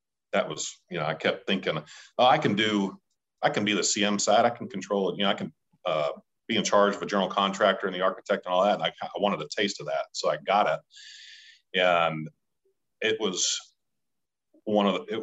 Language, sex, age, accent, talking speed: English, male, 40-59, American, 230 wpm